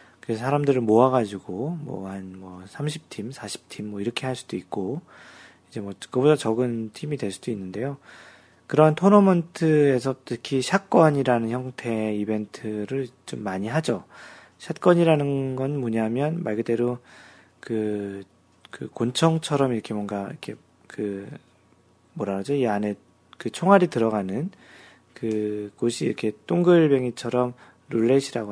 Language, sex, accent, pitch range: Korean, male, native, 110-150 Hz